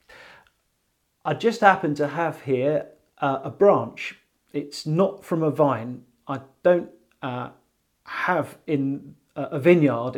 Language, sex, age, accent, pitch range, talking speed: English, male, 40-59, British, 140-180 Hz, 125 wpm